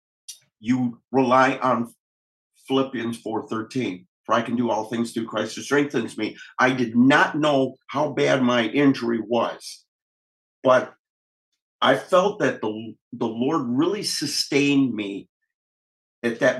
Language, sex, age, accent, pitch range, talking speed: English, male, 50-69, American, 115-135 Hz, 135 wpm